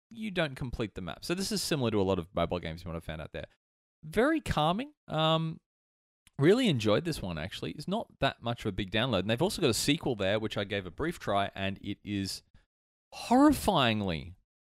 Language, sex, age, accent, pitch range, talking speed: English, male, 30-49, Australian, 90-145 Hz, 220 wpm